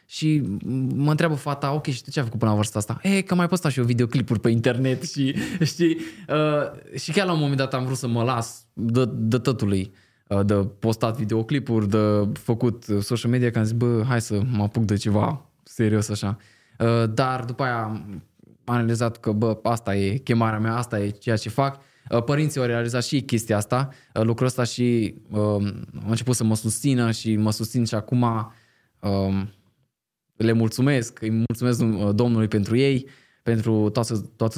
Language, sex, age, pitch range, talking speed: Romanian, male, 20-39, 110-130 Hz, 195 wpm